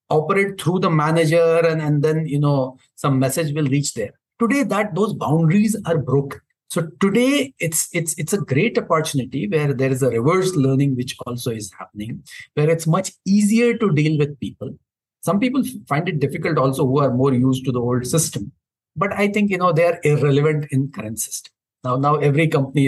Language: English